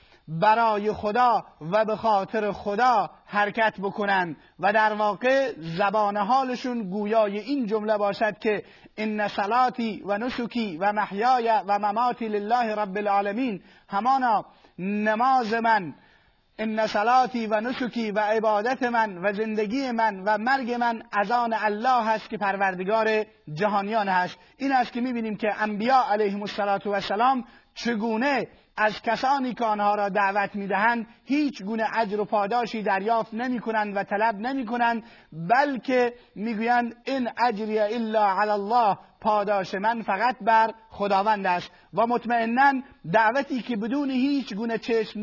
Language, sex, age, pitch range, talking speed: Persian, male, 30-49, 205-240 Hz, 135 wpm